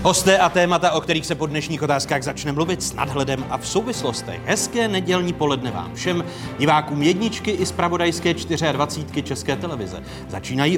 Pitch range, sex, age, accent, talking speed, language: 120-175 Hz, male, 40-59, native, 160 wpm, Czech